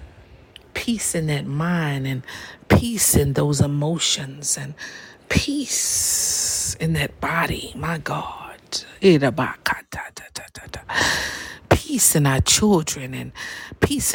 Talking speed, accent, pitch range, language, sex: 95 wpm, American, 140-220 Hz, English, female